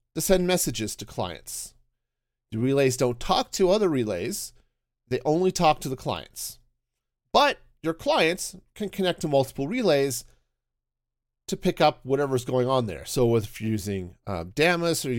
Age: 40-59